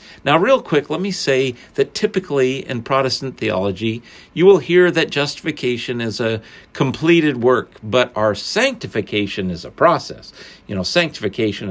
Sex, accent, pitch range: male, American, 115-170 Hz